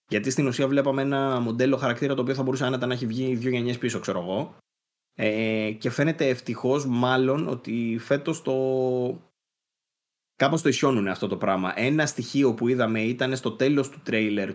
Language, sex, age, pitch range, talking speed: Greek, male, 20-39, 105-130 Hz, 175 wpm